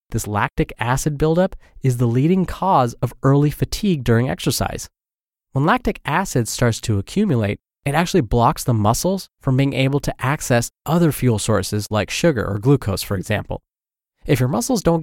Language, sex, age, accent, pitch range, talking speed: English, male, 20-39, American, 105-150 Hz, 170 wpm